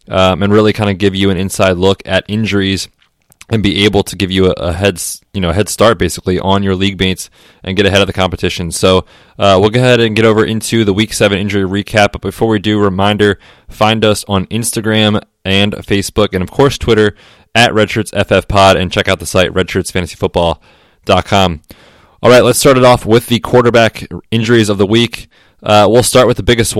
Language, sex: English, male